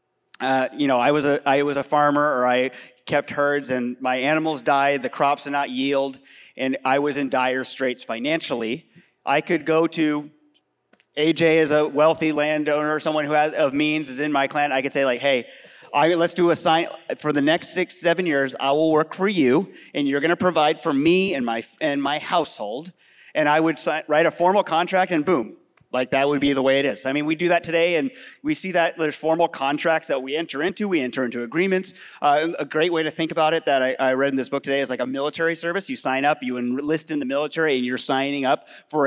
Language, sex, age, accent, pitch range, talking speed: English, male, 30-49, American, 135-165 Hz, 235 wpm